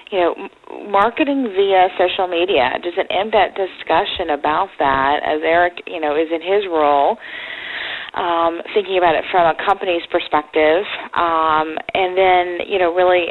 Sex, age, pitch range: female, 40-59, 155-185 Hz